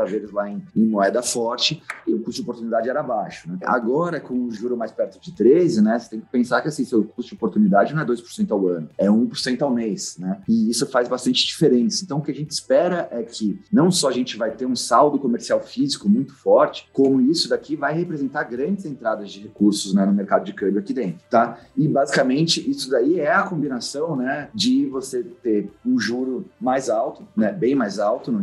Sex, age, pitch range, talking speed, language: male, 30-49, 105-155 Hz, 220 wpm, Portuguese